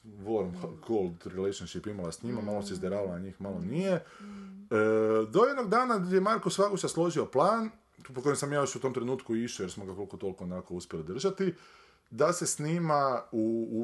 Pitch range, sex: 115-180 Hz, male